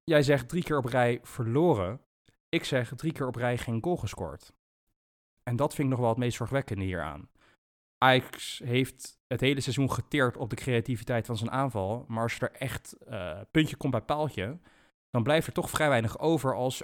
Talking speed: 200 wpm